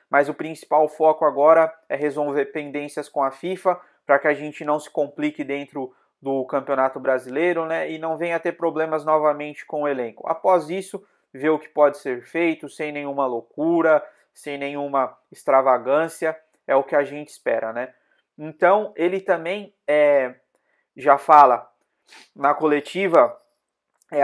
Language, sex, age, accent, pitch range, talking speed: Portuguese, male, 20-39, Brazilian, 135-160 Hz, 155 wpm